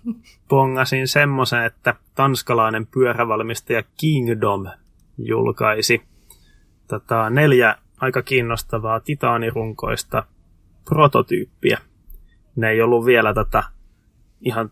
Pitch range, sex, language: 105-125 Hz, male, Finnish